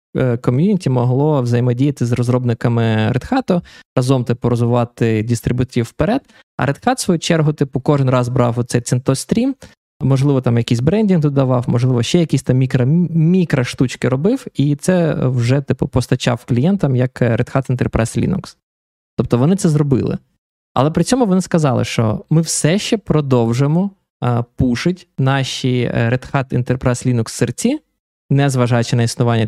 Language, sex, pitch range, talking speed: Ukrainian, male, 120-150 Hz, 145 wpm